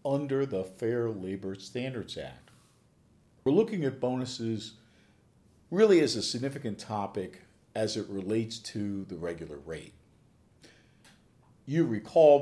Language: English